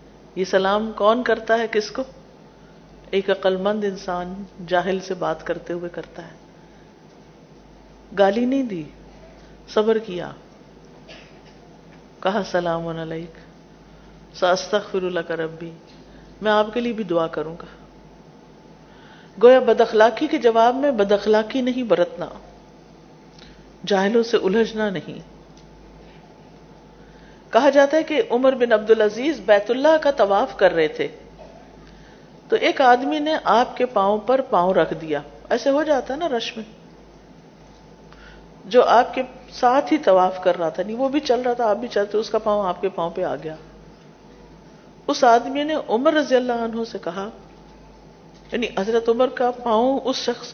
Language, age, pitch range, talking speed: Urdu, 50-69, 185-245 Hz, 150 wpm